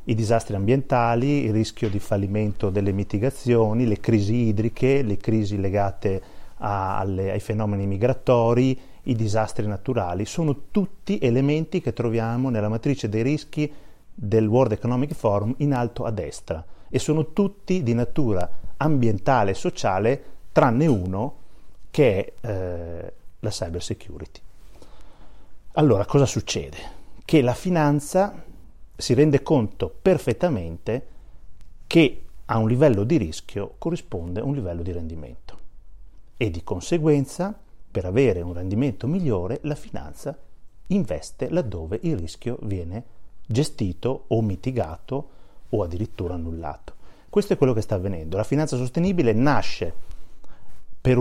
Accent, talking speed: native, 125 wpm